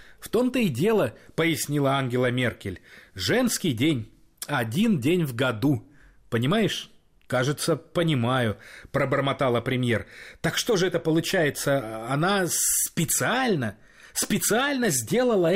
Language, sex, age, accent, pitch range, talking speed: Russian, male, 30-49, native, 125-175 Hz, 105 wpm